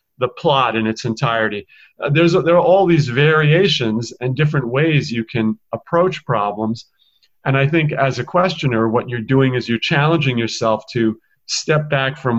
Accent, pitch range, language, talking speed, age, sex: American, 115-145 Hz, English, 180 wpm, 40-59, male